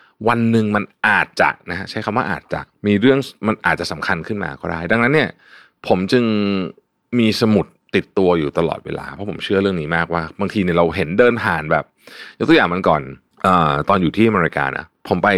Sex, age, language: male, 20-39, Thai